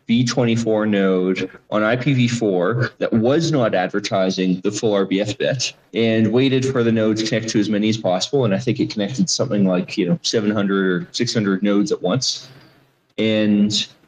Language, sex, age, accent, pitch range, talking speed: English, male, 20-39, American, 95-120 Hz, 170 wpm